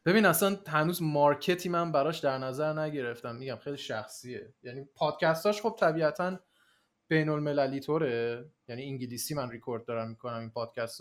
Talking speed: 155 wpm